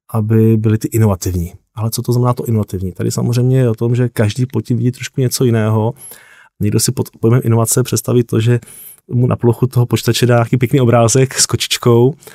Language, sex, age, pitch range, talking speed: Czech, male, 20-39, 110-120 Hz, 200 wpm